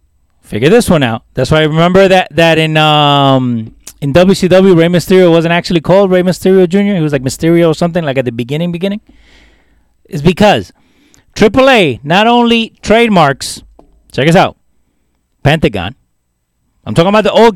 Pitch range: 120-195 Hz